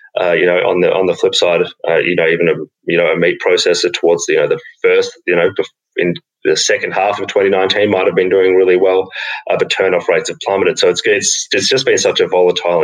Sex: male